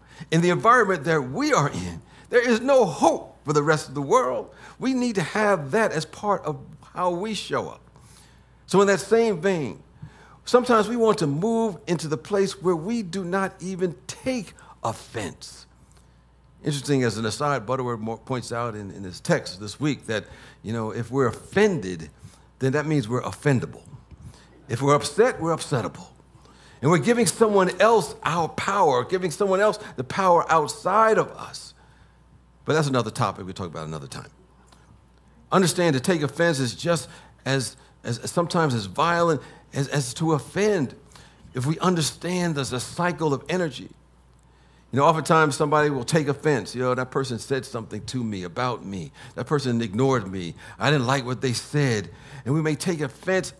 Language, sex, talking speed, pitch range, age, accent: English, male, 175 wpm, 120-175 Hz, 60-79, American